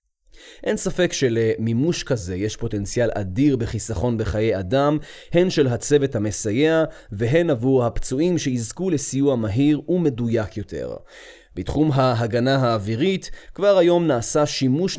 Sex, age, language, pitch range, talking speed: male, 30-49, Hebrew, 115-155 Hz, 115 wpm